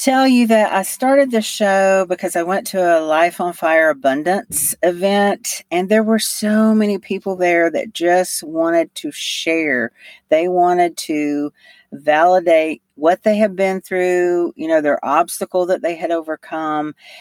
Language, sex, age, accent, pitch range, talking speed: English, female, 50-69, American, 155-205 Hz, 160 wpm